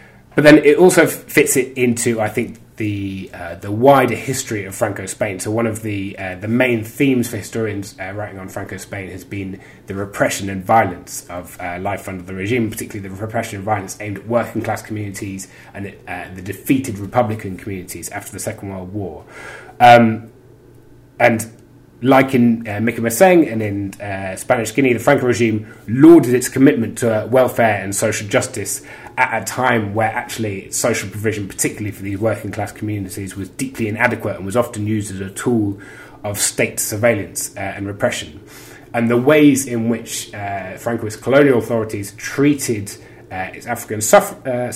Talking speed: 170 wpm